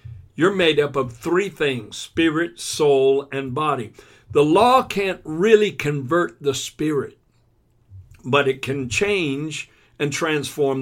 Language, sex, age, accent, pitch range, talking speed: English, male, 60-79, American, 125-170 Hz, 130 wpm